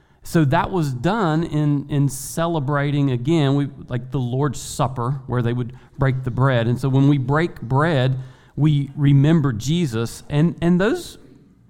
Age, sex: 40-59, male